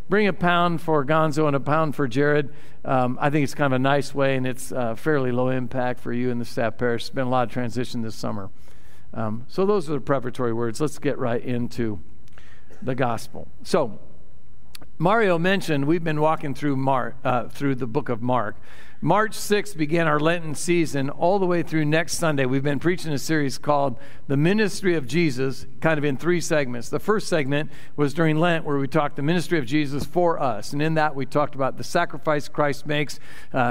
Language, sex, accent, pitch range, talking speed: English, male, American, 130-165 Hz, 210 wpm